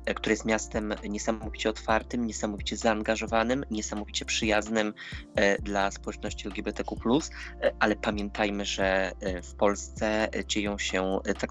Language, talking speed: Polish, 105 wpm